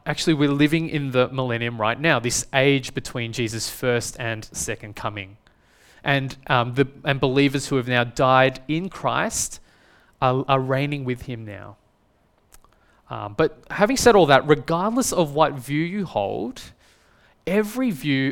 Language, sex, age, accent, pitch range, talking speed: English, male, 20-39, Australian, 115-150 Hz, 155 wpm